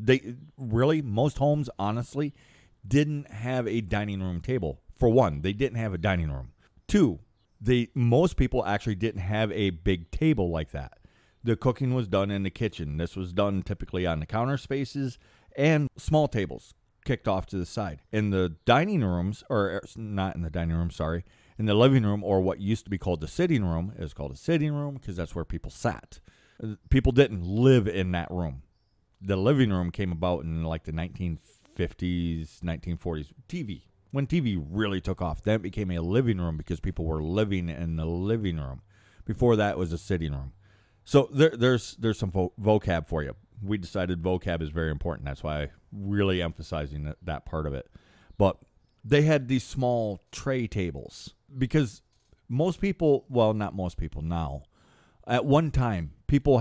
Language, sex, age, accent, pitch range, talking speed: English, male, 40-59, American, 85-120 Hz, 185 wpm